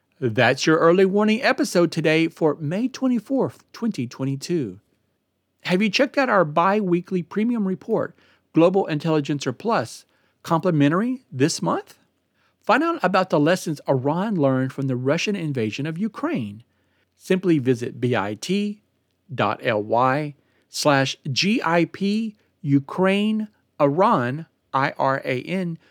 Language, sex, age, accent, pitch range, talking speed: English, male, 50-69, American, 130-195 Hz, 95 wpm